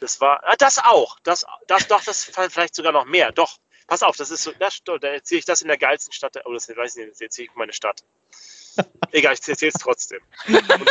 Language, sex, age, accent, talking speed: German, male, 30-49, German, 230 wpm